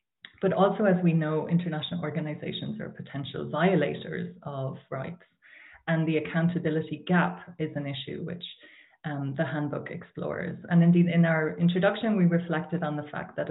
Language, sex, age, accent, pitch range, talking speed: English, female, 30-49, Irish, 145-170 Hz, 155 wpm